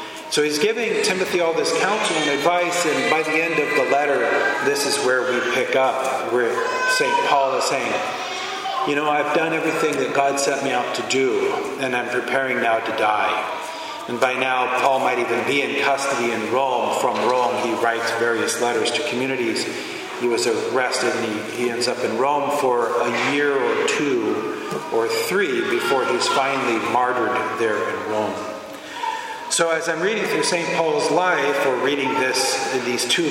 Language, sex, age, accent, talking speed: English, male, 40-59, American, 180 wpm